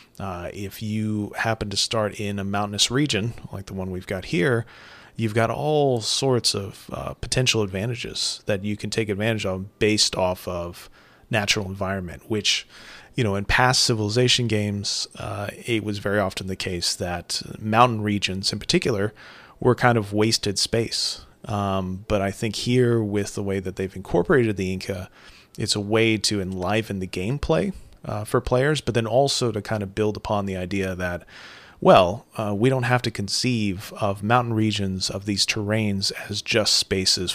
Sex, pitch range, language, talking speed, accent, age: male, 95-115 Hz, English, 175 wpm, American, 30-49